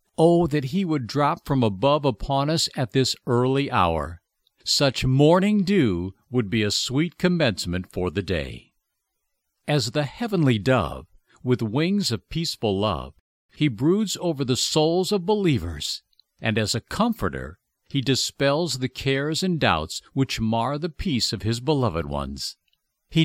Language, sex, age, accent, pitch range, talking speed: English, male, 60-79, American, 110-165 Hz, 150 wpm